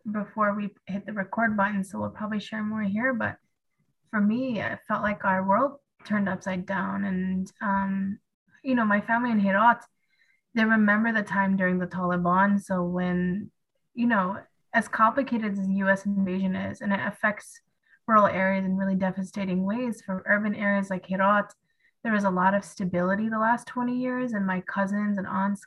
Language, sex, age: English, female, 20-39